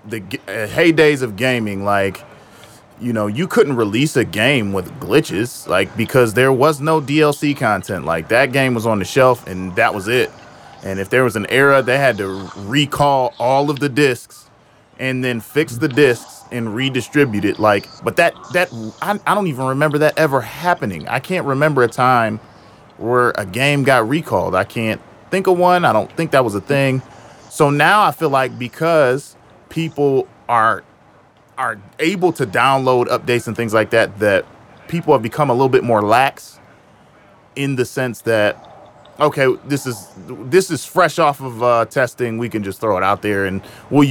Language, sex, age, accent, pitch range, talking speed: English, male, 20-39, American, 115-145 Hz, 185 wpm